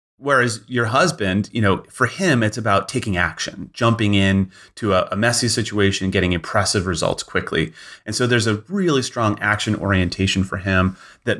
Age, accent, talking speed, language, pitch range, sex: 30-49, American, 170 wpm, English, 100-125 Hz, male